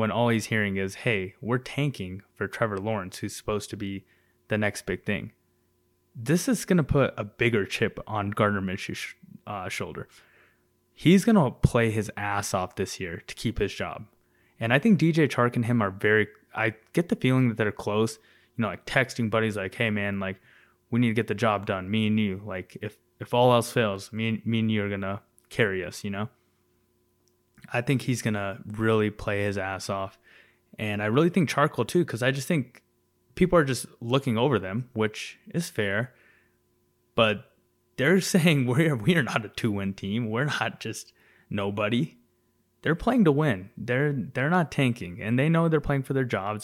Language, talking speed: English, 200 wpm